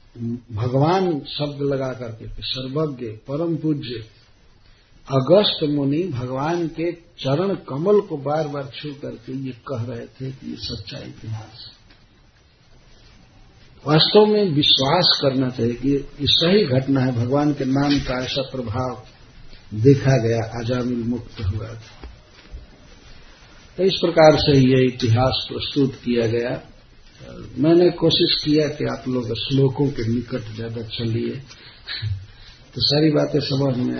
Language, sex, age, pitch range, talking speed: Hindi, male, 60-79, 115-140 Hz, 130 wpm